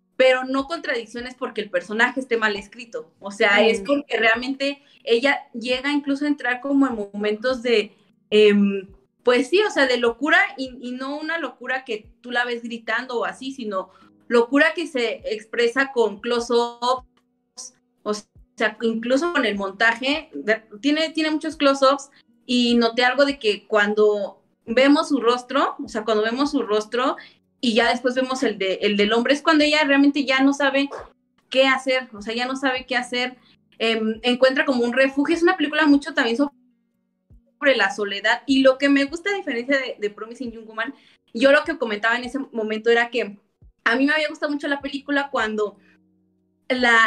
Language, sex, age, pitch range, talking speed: Spanish, female, 30-49, 225-275 Hz, 180 wpm